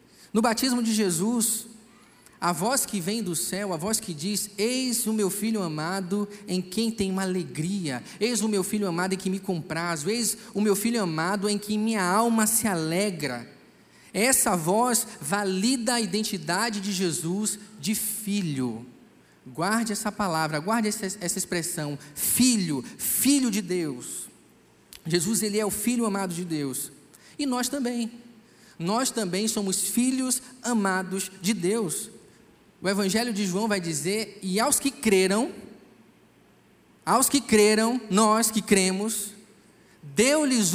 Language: Portuguese